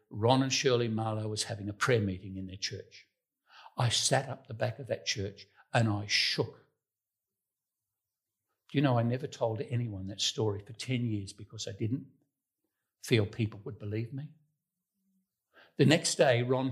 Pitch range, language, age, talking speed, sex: 105-135 Hz, English, 60-79, 170 wpm, male